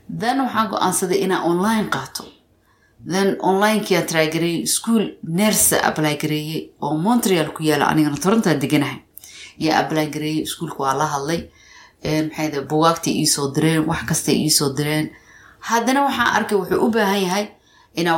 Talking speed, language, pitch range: 40 wpm, English, 155-185 Hz